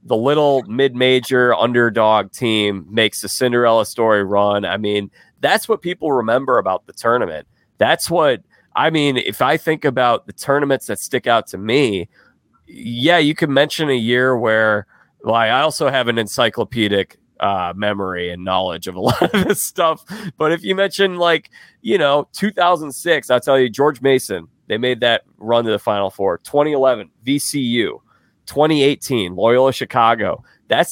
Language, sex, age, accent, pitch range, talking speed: English, male, 30-49, American, 105-135 Hz, 165 wpm